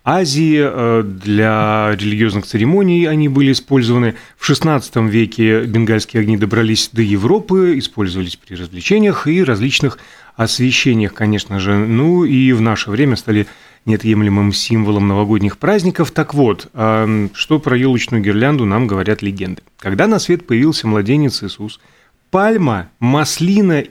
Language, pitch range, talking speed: Russian, 105-145 Hz, 125 wpm